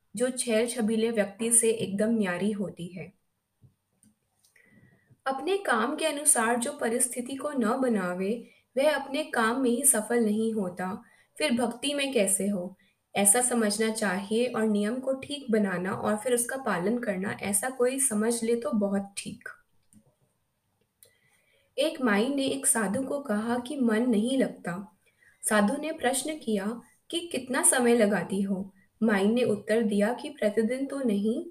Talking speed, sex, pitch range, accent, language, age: 150 wpm, female, 210-255 Hz, native, Hindi, 20-39